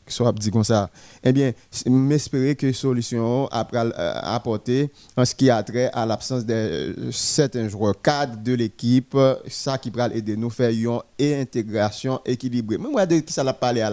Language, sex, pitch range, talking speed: French, male, 115-140 Hz, 175 wpm